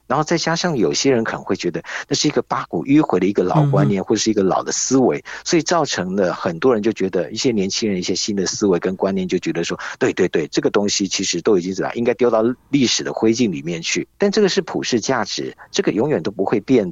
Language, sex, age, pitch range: Chinese, male, 50-69, 100-150 Hz